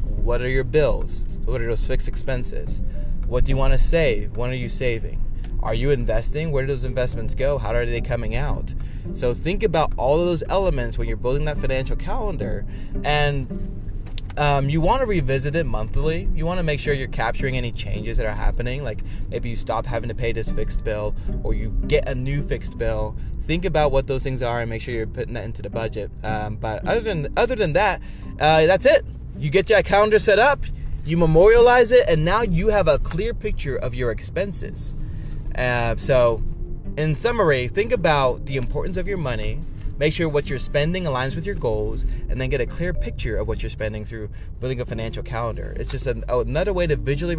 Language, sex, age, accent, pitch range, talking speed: English, male, 20-39, American, 110-145 Hz, 215 wpm